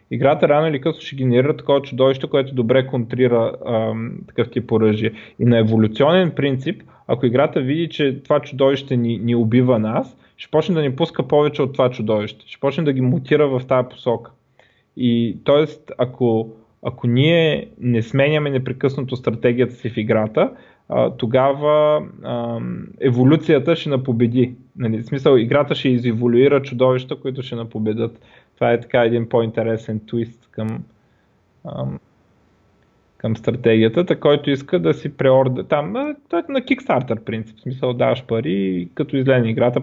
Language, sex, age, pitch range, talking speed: Bulgarian, male, 20-39, 115-140 Hz, 155 wpm